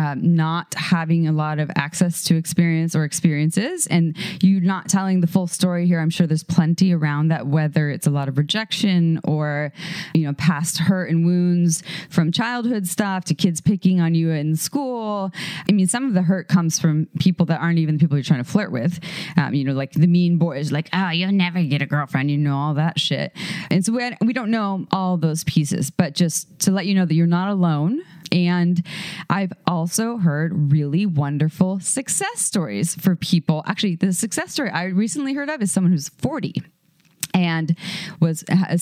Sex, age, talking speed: female, 20-39, 200 wpm